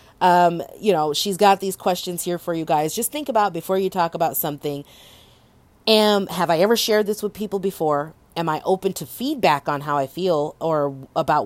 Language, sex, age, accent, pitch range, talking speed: English, female, 30-49, American, 160-205 Hz, 205 wpm